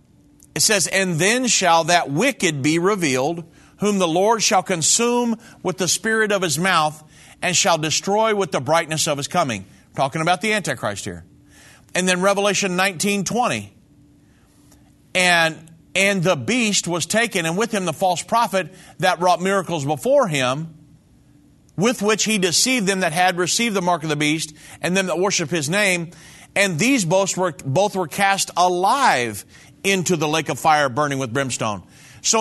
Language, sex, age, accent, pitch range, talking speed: English, male, 40-59, American, 155-195 Hz, 170 wpm